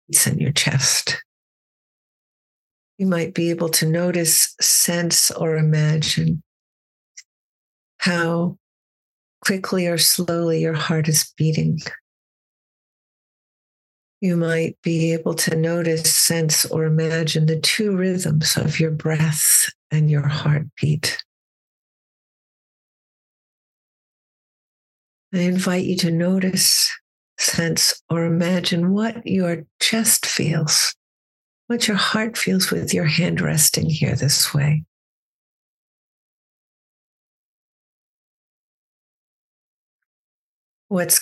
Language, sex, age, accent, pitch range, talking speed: Italian, female, 60-79, American, 155-180 Hz, 90 wpm